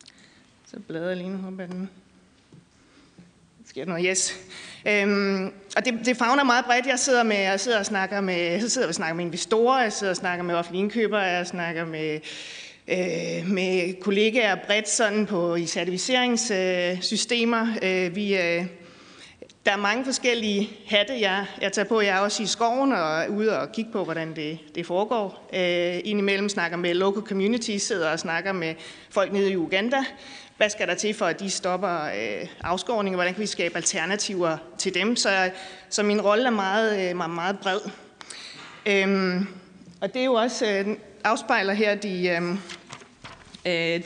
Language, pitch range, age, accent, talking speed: Danish, 175-220 Hz, 30-49, native, 175 wpm